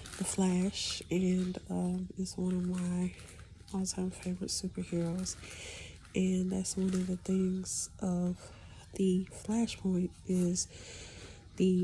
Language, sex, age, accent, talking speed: English, female, 30-49, American, 110 wpm